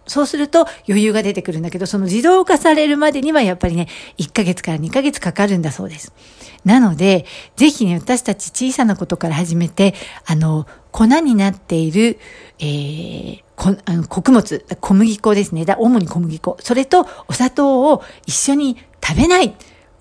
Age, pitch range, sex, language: 60-79, 175-255 Hz, female, Japanese